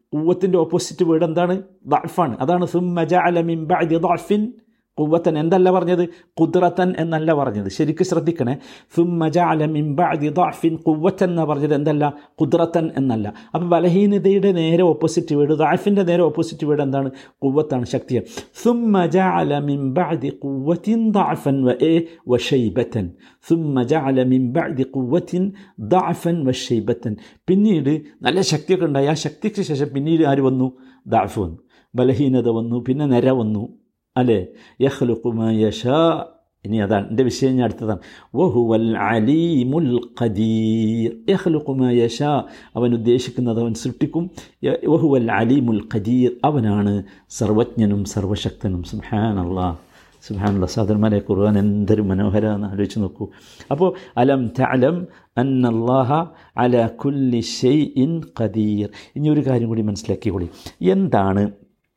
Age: 50-69